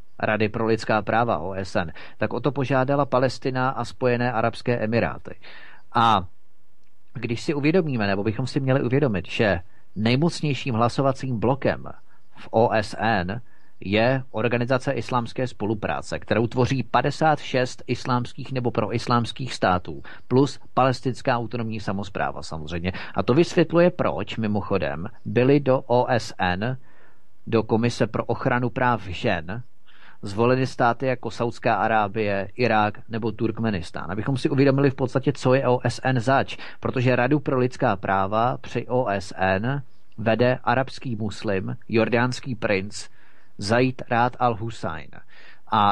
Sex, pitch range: male, 110-130 Hz